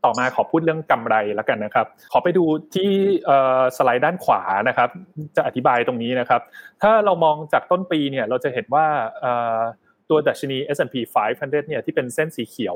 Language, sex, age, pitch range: Thai, male, 20-39, 125-160 Hz